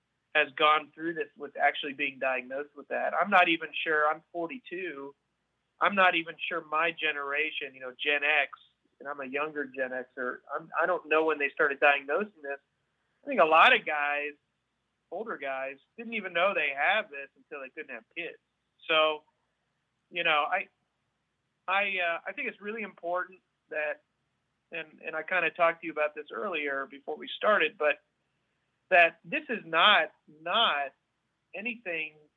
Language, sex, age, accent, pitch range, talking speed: English, male, 30-49, American, 145-180 Hz, 170 wpm